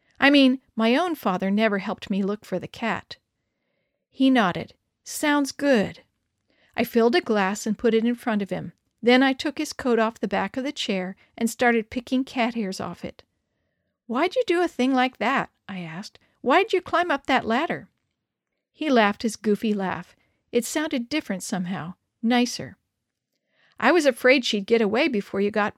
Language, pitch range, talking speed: English, 205-270 Hz, 185 wpm